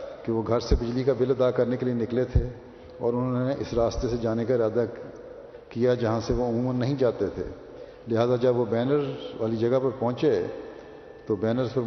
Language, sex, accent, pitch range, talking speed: English, male, Indian, 110-120 Hz, 205 wpm